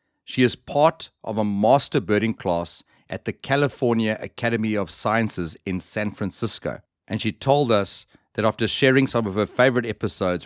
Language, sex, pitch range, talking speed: English, male, 90-120 Hz, 165 wpm